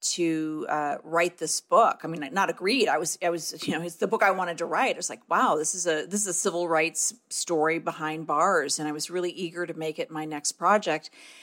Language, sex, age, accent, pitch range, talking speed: English, female, 40-59, American, 155-215 Hz, 255 wpm